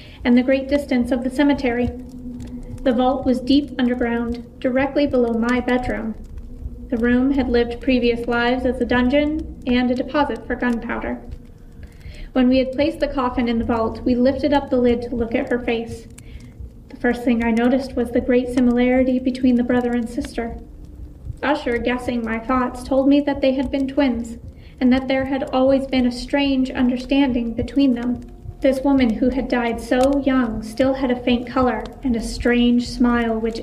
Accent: American